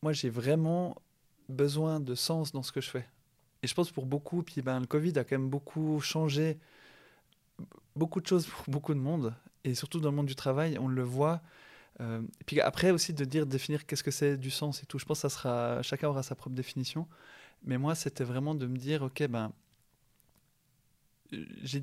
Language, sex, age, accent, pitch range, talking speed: French, male, 20-39, French, 130-155 Hz, 215 wpm